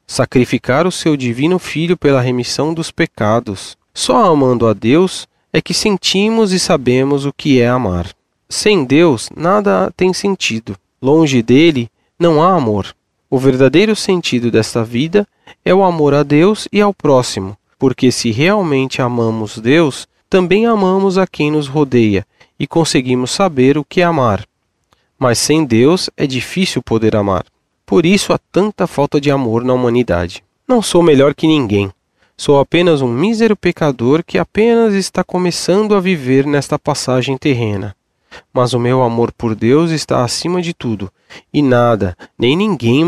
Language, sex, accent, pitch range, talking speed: Portuguese, male, Brazilian, 125-180 Hz, 155 wpm